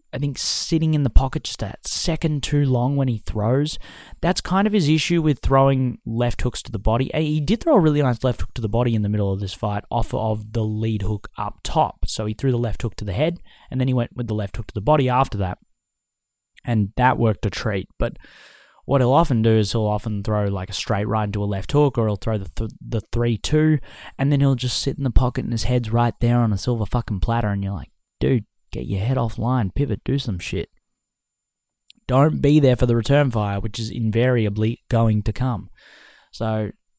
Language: English